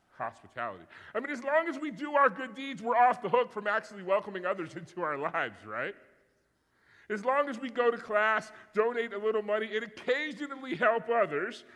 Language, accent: English, American